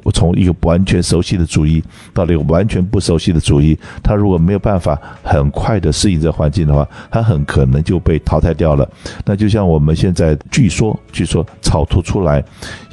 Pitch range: 80-100 Hz